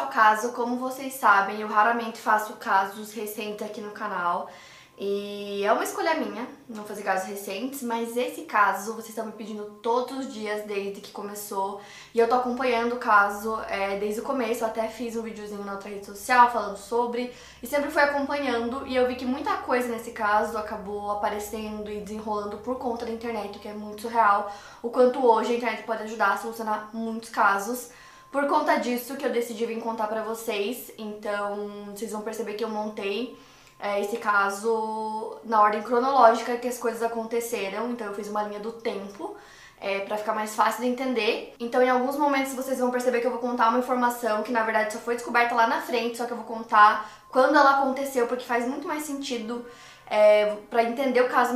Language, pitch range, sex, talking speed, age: Portuguese, 210-245 Hz, female, 200 wpm, 10-29